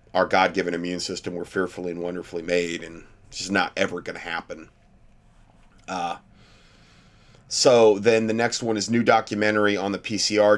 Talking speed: 165 wpm